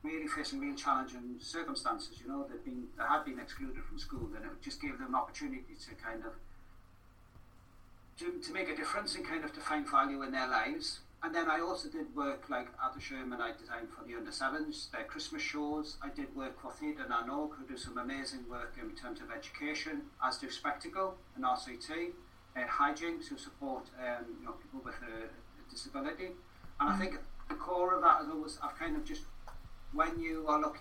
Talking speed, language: 205 wpm, English